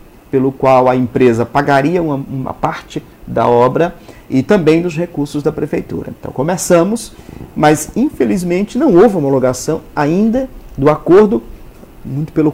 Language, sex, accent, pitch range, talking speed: Portuguese, male, Brazilian, 120-165 Hz, 135 wpm